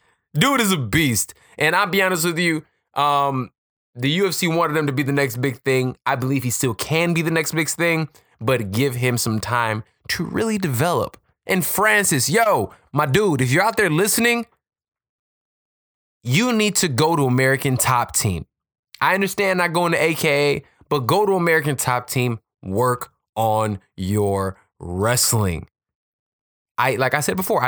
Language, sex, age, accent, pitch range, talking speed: English, male, 20-39, American, 120-170 Hz, 170 wpm